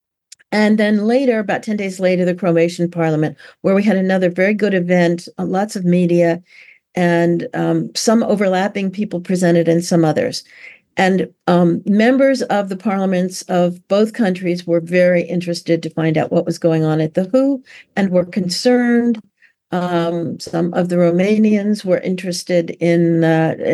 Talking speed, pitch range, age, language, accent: 160 wpm, 175-215 Hz, 50-69, English, American